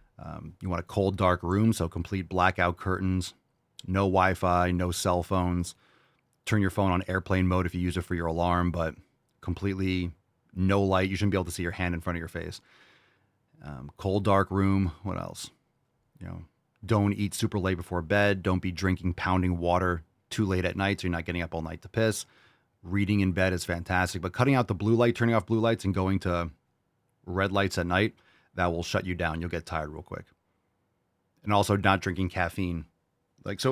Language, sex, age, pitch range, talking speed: English, male, 30-49, 85-100 Hz, 210 wpm